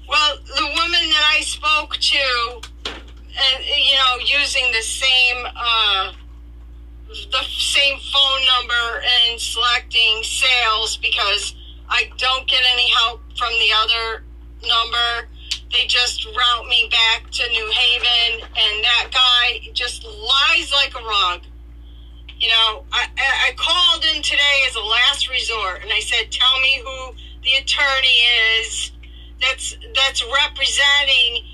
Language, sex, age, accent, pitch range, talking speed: English, female, 40-59, American, 225-285 Hz, 135 wpm